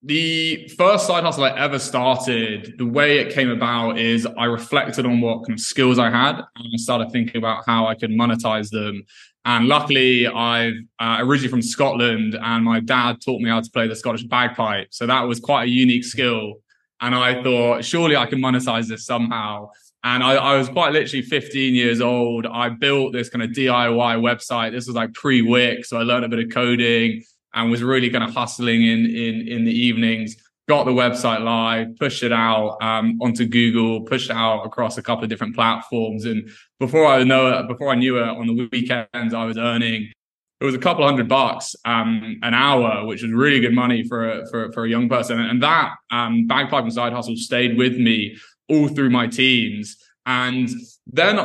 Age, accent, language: 20-39, British, English